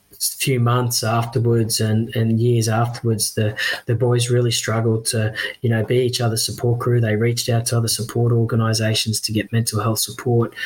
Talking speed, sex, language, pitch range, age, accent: 180 wpm, male, English, 115-125 Hz, 20-39, Australian